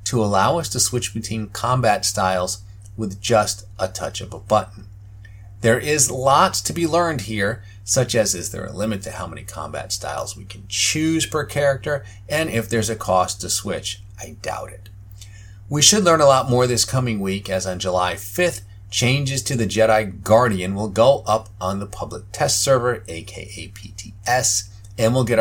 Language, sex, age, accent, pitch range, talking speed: English, male, 30-49, American, 95-115 Hz, 185 wpm